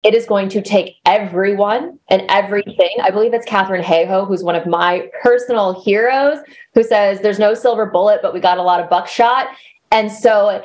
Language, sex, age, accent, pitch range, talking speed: English, female, 20-39, American, 185-230 Hz, 190 wpm